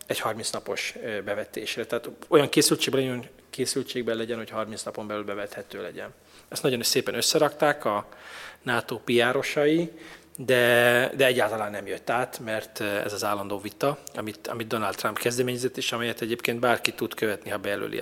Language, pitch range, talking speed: Hungarian, 105-135 Hz, 155 wpm